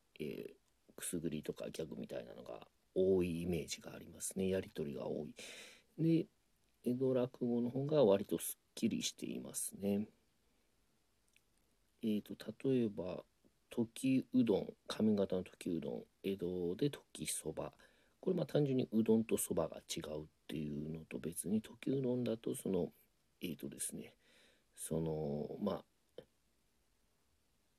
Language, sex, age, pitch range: Japanese, male, 40-59, 85-140 Hz